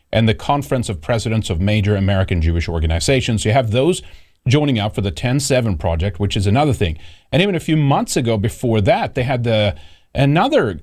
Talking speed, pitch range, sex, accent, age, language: 195 wpm, 95-125 Hz, male, American, 40-59, English